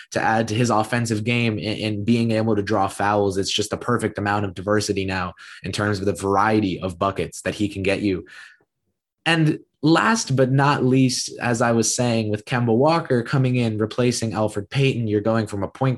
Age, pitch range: 20-39, 100-125 Hz